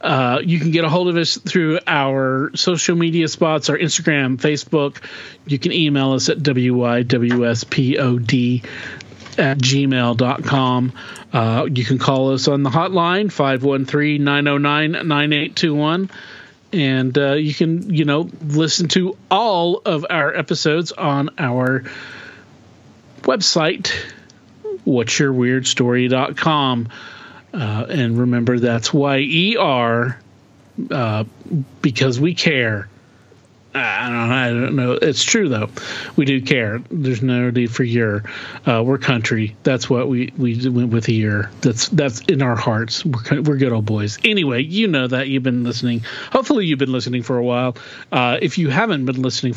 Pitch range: 125-155 Hz